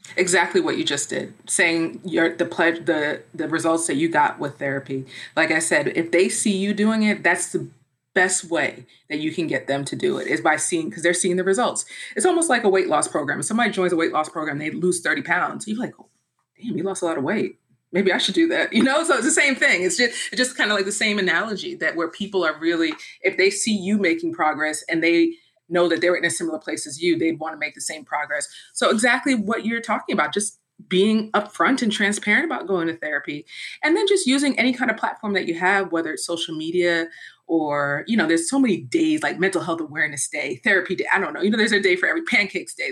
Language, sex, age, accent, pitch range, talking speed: English, female, 30-49, American, 165-230 Hz, 255 wpm